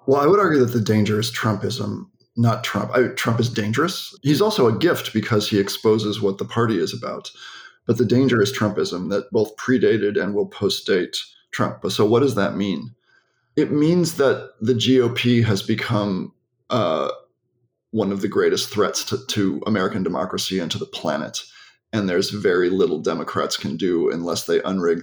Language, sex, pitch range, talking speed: English, male, 110-175 Hz, 180 wpm